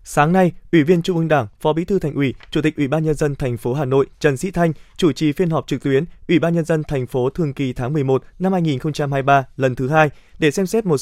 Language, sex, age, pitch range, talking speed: Vietnamese, male, 20-39, 140-170 Hz, 270 wpm